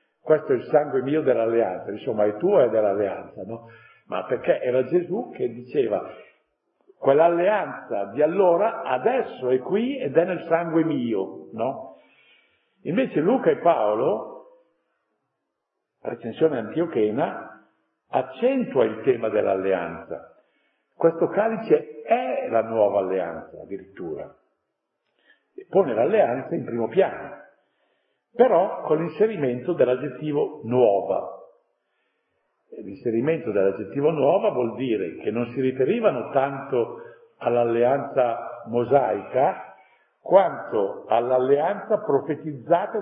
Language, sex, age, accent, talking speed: Italian, male, 50-69, native, 100 wpm